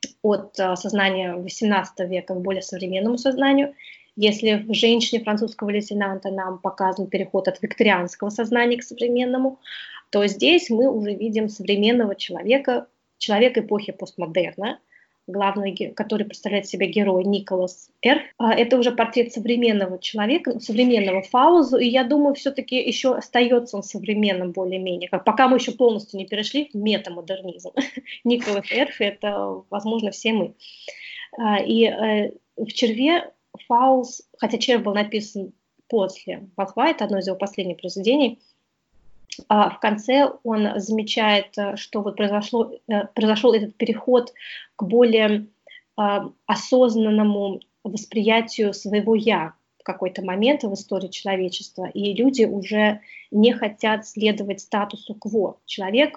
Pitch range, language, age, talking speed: 195-235 Hz, Russian, 20-39, 125 wpm